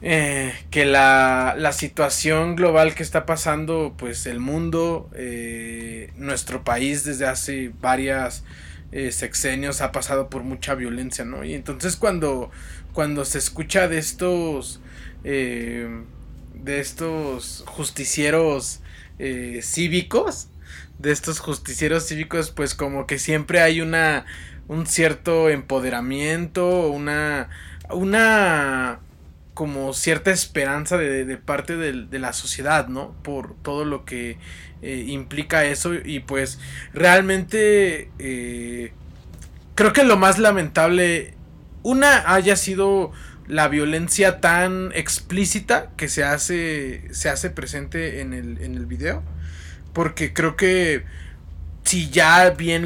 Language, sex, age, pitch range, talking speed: Spanish, male, 20-39, 120-165 Hz, 120 wpm